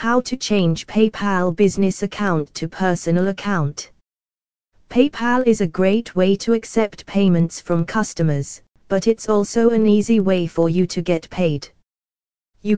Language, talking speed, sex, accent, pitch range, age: English, 145 wpm, female, British, 170-205 Hz, 20-39